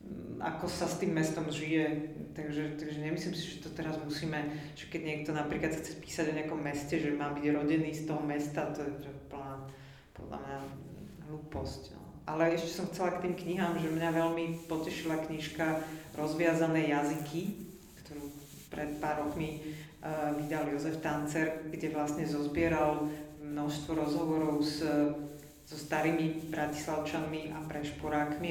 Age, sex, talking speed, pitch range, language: 40-59, female, 145 wpm, 145-160 Hz, Slovak